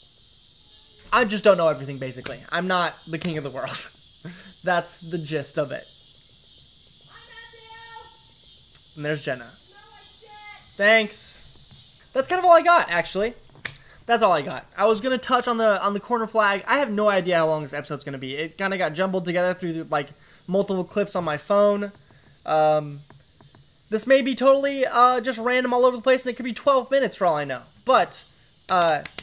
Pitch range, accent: 170-235 Hz, American